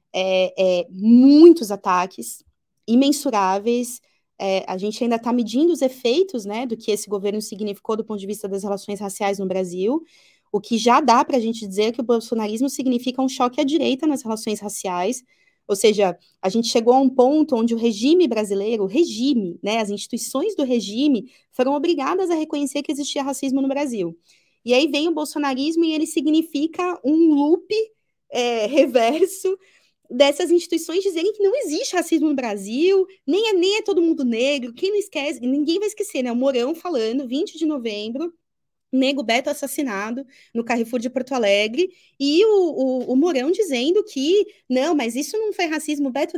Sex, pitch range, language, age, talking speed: female, 230-325 Hz, Portuguese, 20-39, 175 wpm